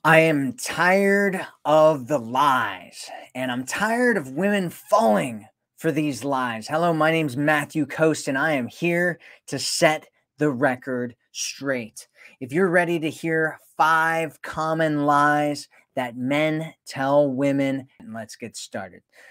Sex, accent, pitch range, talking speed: male, American, 140-190 Hz, 135 wpm